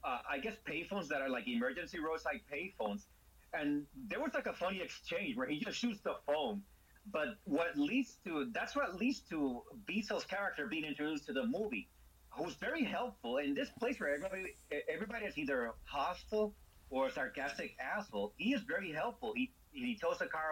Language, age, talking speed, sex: English, 30-49, 190 wpm, male